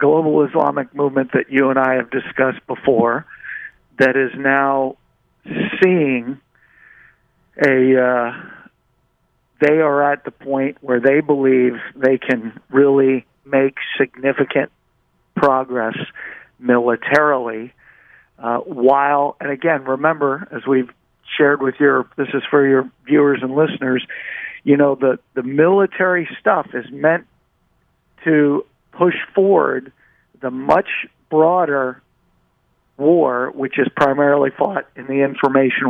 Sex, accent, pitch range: male, American, 130-150 Hz